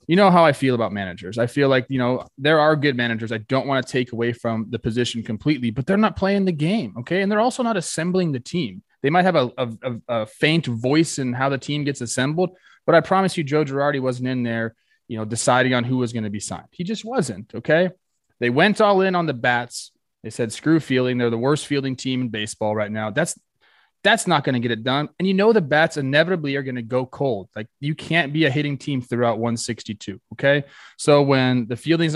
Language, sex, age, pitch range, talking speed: English, male, 20-39, 120-160 Hz, 240 wpm